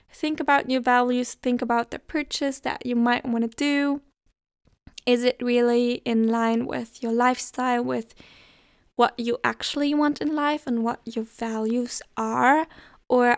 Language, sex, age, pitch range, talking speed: English, female, 10-29, 225-255 Hz, 155 wpm